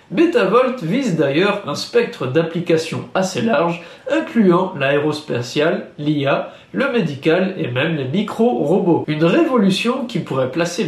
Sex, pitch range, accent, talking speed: male, 155-230 Hz, French, 120 wpm